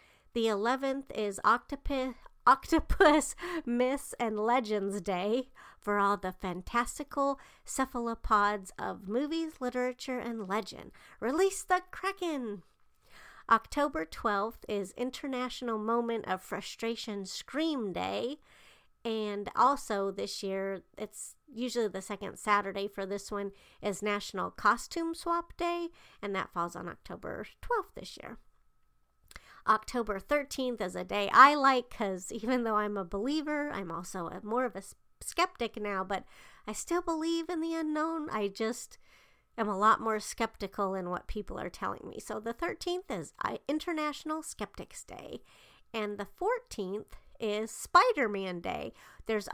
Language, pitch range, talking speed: English, 205-275 Hz, 135 wpm